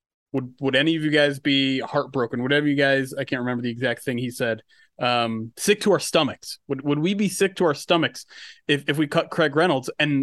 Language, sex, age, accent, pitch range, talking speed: English, male, 20-39, American, 130-155 Hz, 230 wpm